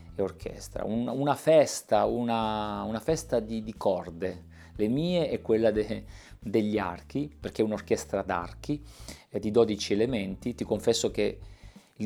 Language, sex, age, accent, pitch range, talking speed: Italian, male, 40-59, native, 95-115 Hz, 150 wpm